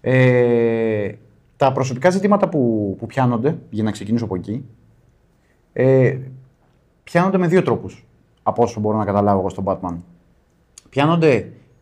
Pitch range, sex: 105-140 Hz, male